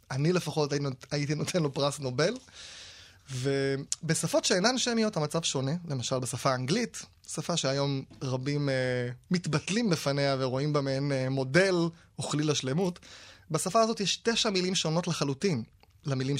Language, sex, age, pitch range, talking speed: Hebrew, male, 20-39, 130-180 Hz, 135 wpm